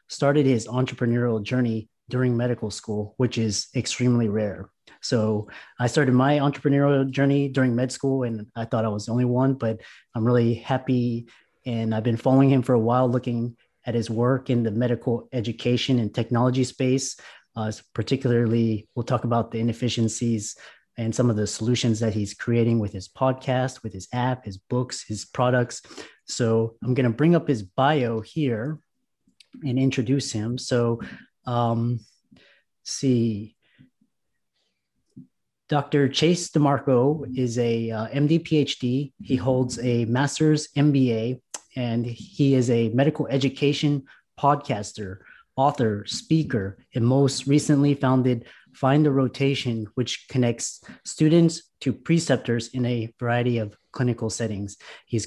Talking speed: 145 wpm